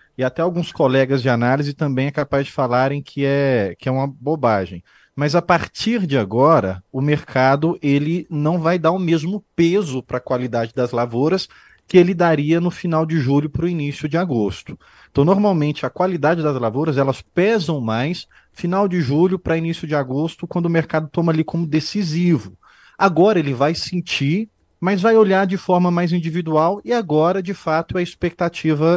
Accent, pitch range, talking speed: Brazilian, 135-175 Hz, 180 wpm